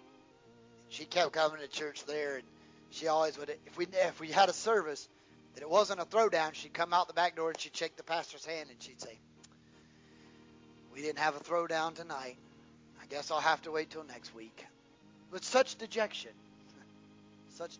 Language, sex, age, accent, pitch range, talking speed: English, male, 30-49, American, 135-210 Hz, 190 wpm